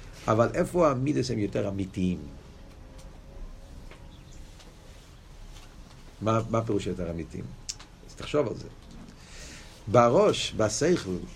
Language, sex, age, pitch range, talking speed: Hebrew, male, 50-69, 100-140 Hz, 95 wpm